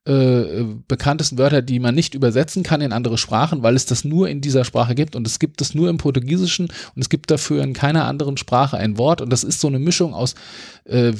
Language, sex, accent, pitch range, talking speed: German, male, German, 120-160 Hz, 235 wpm